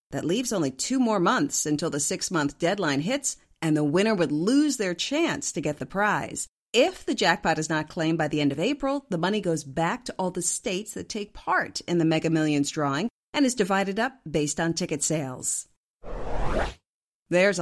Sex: female